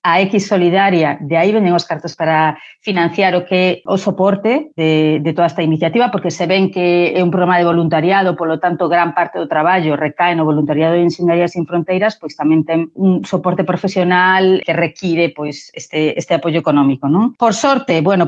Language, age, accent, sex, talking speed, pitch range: English, 30-49, Spanish, female, 205 wpm, 170-190 Hz